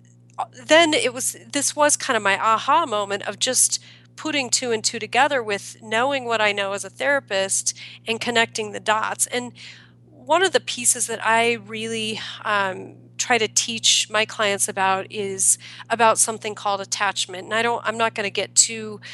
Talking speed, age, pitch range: 180 wpm, 40-59, 190-230 Hz